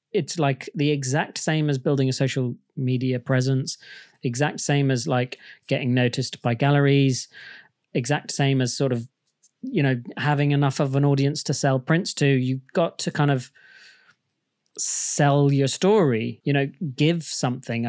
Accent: British